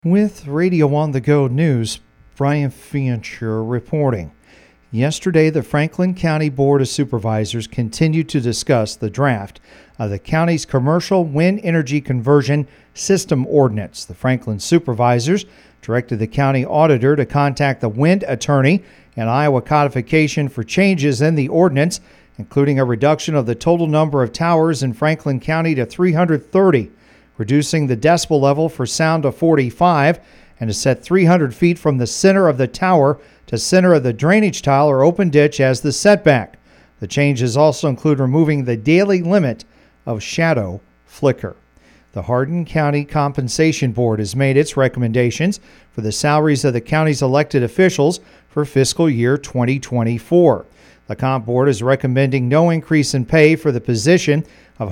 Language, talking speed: English, 155 wpm